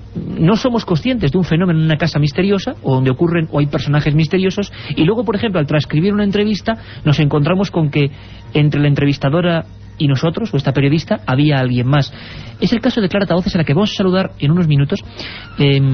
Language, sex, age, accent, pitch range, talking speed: Spanish, male, 40-59, Spanish, 140-190 Hz, 210 wpm